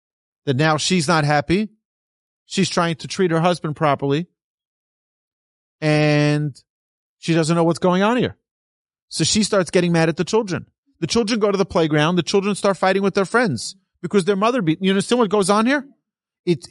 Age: 40-59